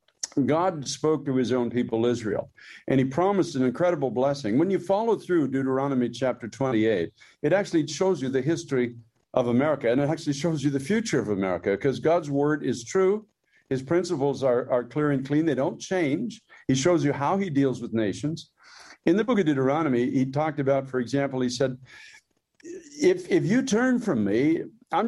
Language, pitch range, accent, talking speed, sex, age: English, 125-160 Hz, American, 190 wpm, male, 50-69